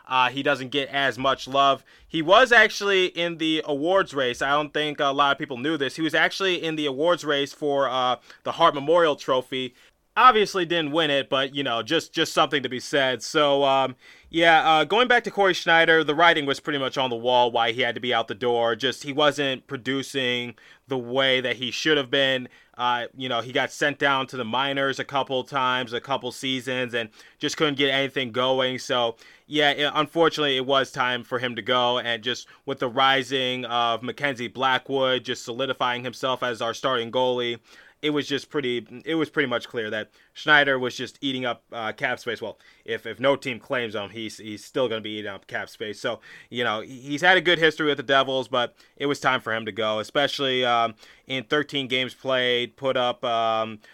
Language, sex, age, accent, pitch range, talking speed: English, male, 20-39, American, 120-145 Hz, 220 wpm